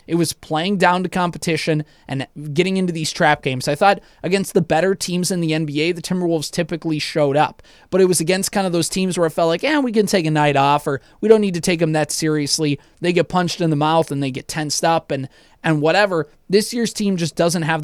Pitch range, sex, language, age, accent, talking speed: 145-175 Hz, male, English, 20-39, American, 250 wpm